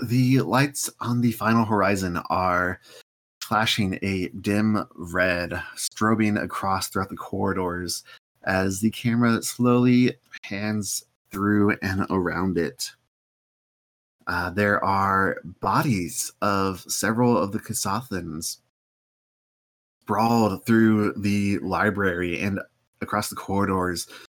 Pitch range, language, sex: 95-110 Hz, English, male